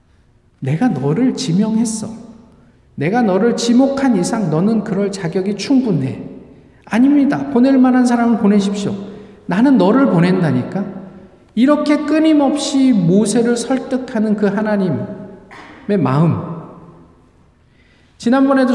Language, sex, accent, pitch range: Korean, male, native, 185-245 Hz